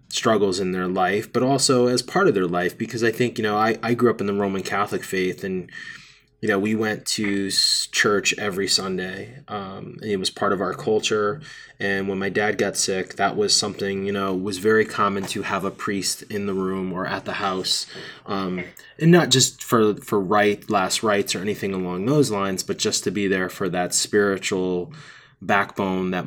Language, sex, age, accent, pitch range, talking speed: English, male, 20-39, American, 95-110 Hz, 205 wpm